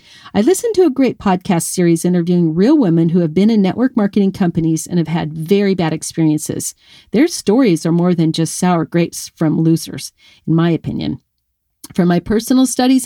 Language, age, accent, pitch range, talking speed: English, 50-69, American, 165-220 Hz, 185 wpm